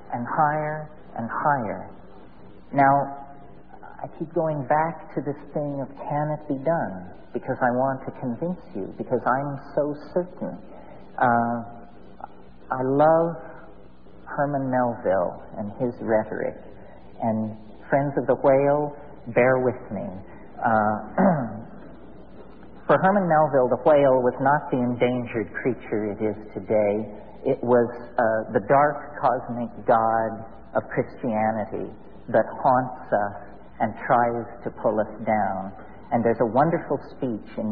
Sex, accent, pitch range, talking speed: male, American, 110-145 Hz, 130 wpm